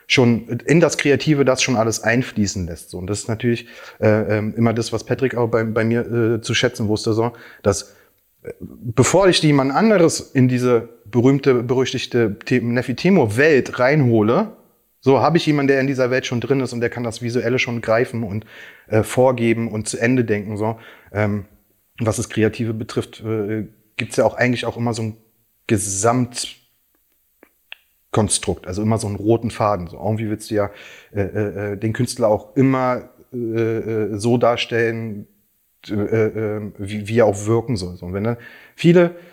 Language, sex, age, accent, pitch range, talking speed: German, male, 30-49, German, 110-130 Hz, 175 wpm